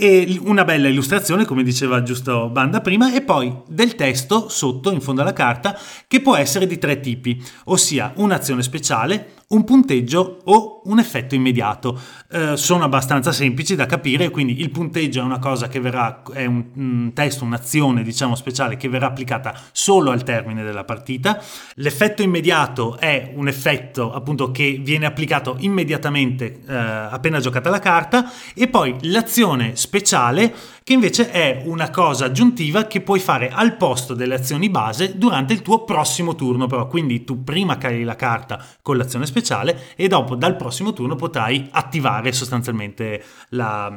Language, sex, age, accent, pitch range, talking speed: Italian, male, 30-49, native, 125-185 Hz, 165 wpm